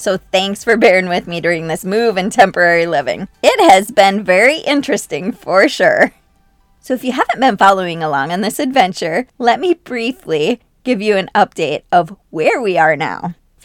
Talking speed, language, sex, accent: 185 wpm, English, female, American